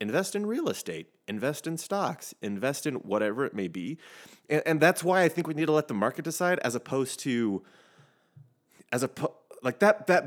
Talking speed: 200 wpm